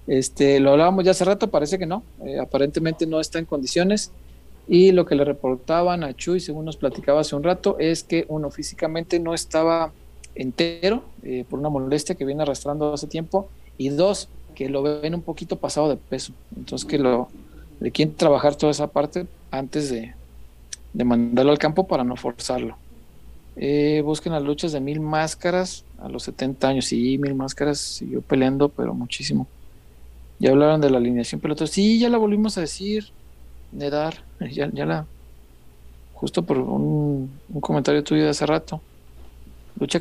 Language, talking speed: Spanish, 175 wpm